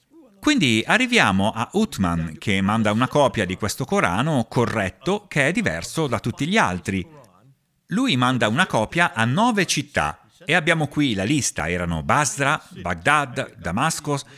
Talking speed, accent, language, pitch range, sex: 145 wpm, native, Italian, 110-160 Hz, male